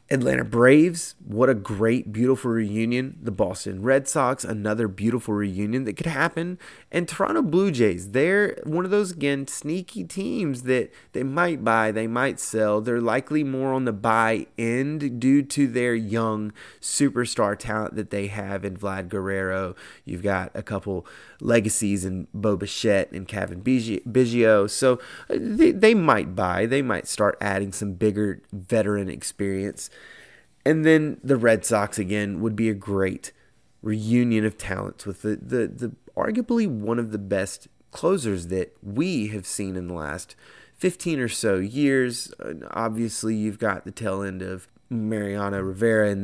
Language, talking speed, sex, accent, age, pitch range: English, 160 wpm, male, American, 30-49, 100-130 Hz